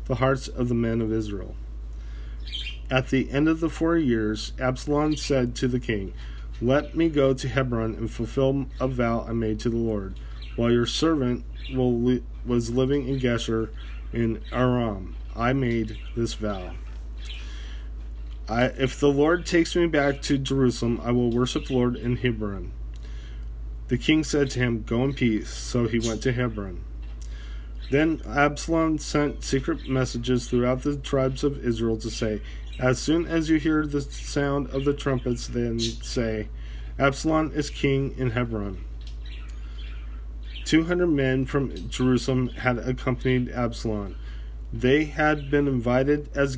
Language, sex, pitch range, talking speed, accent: English, male, 100-135 Hz, 150 wpm, American